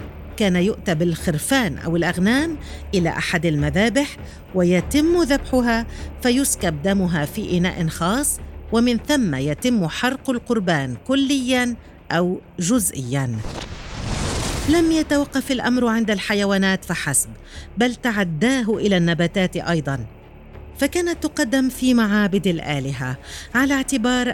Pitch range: 160-245 Hz